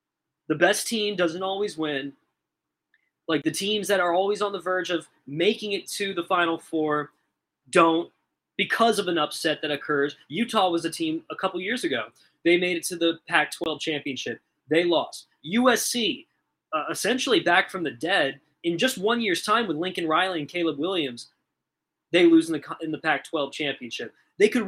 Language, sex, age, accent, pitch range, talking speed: English, male, 20-39, American, 155-200 Hz, 185 wpm